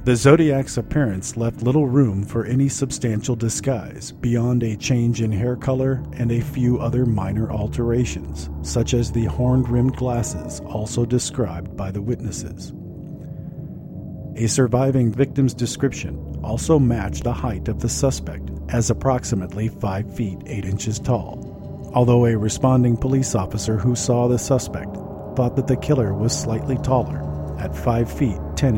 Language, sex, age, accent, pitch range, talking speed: English, male, 50-69, American, 95-130 Hz, 145 wpm